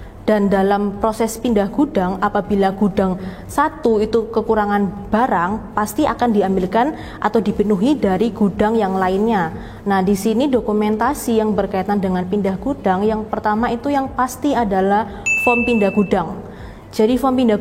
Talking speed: 140 wpm